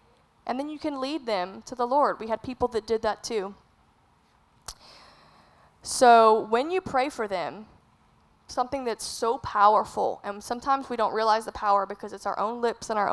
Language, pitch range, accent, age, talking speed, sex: English, 210-290 Hz, American, 10-29, 185 wpm, female